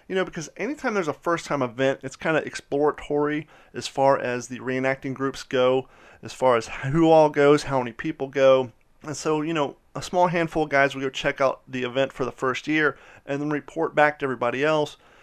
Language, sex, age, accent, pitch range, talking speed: English, male, 30-49, American, 130-155 Hz, 220 wpm